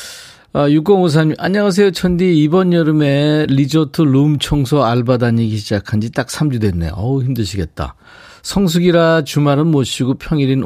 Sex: male